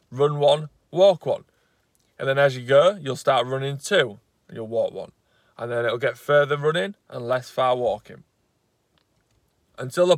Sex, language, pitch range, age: male, English, 135-175 Hz, 20-39